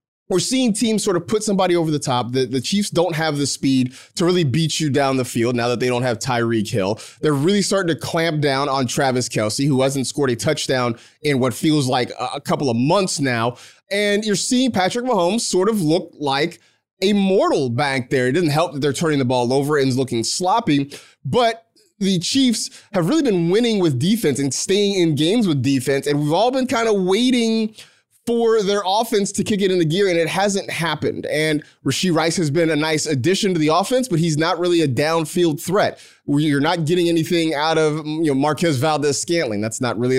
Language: English